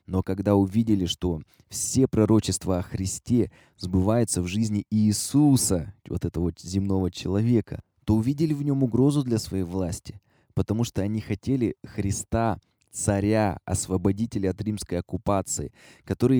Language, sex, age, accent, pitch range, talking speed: Russian, male, 20-39, native, 95-115 Hz, 130 wpm